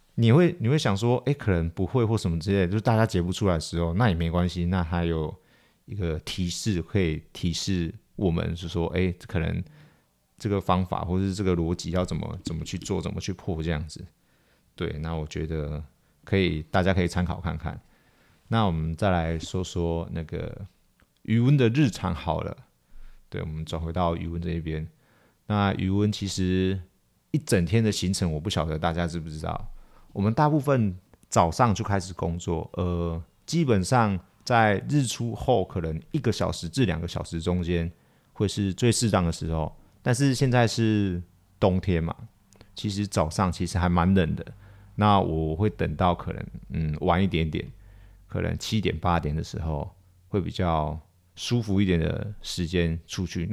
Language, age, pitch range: Chinese, 30-49, 85-105 Hz